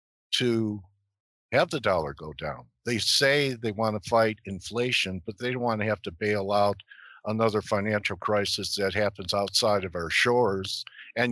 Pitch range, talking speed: 100-115 Hz, 170 wpm